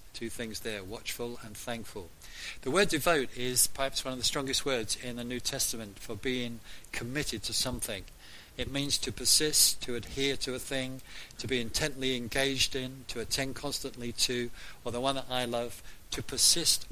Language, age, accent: English, 50-69, British